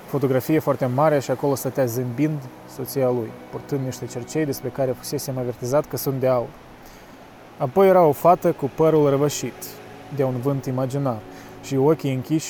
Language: Romanian